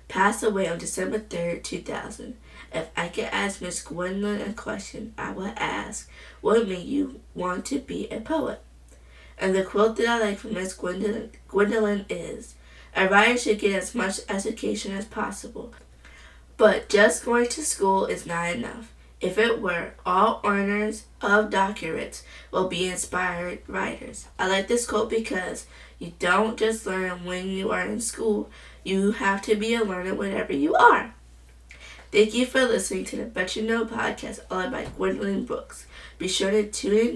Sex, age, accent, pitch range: female, 20-39, American, 180-220 Hz